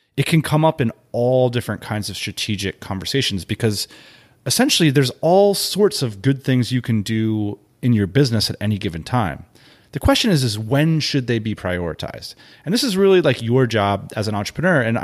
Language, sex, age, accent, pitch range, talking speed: English, male, 30-49, American, 105-145 Hz, 195 wpm